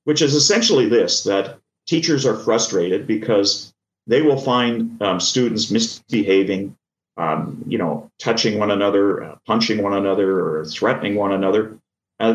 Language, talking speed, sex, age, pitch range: English, 145 wpm, male, 40-59, 100-115 Hz